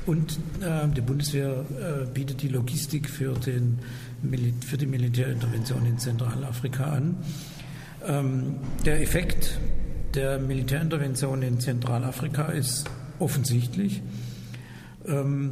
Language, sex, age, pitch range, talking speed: German, male, 60-79, 130-145 Hz, 100 wpm